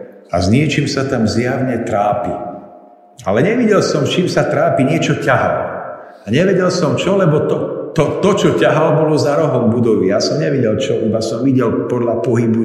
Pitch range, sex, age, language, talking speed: 105-150 Hz, male, 50-69, Slovak, 180 wpm